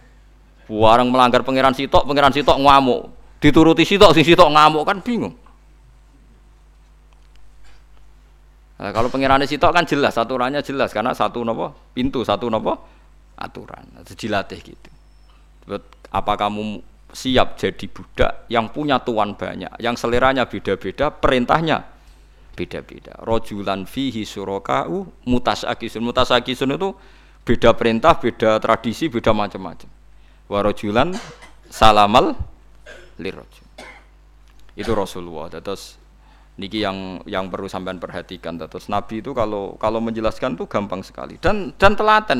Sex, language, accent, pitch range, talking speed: male, Indonesian, native, 95-135 Hz, 120 wpm